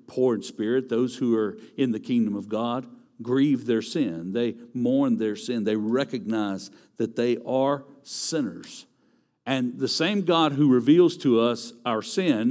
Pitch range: 115-145 Hz